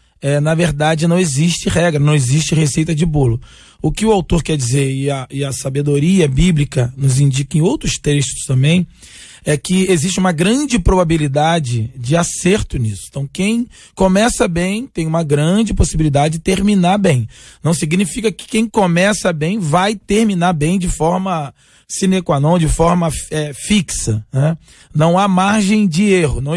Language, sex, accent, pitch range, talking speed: Portuguese, male, Brazilian, 155-190 Hz, 165 wpm